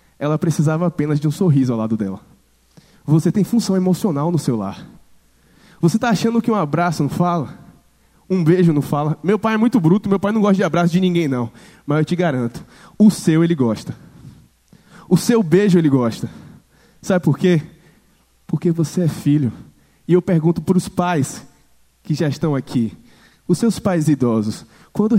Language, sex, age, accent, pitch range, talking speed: Portuguese, male, 20-39, Brazilian, 135-190 Hz, 185 wpm